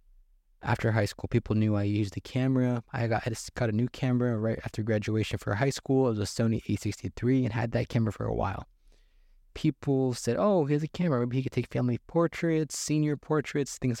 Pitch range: 100-130 Hz